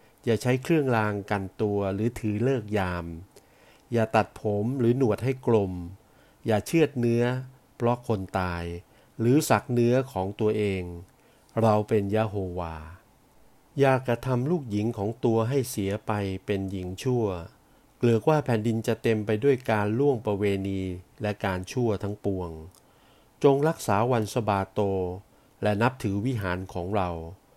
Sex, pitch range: male, 100-125 Hz